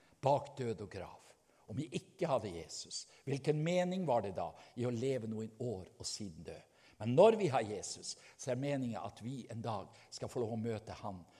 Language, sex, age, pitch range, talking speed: English, male, 60-79, 115-150 Hz, 200 wpm